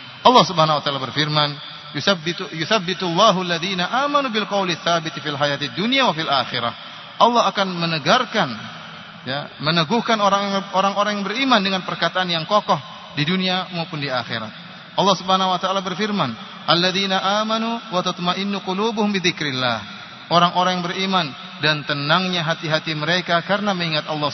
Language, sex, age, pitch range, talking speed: Malay, male, 30-49, 150-185 Hz, 130 wpm